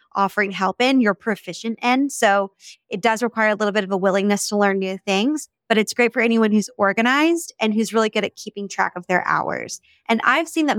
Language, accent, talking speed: English, American, 230 wpm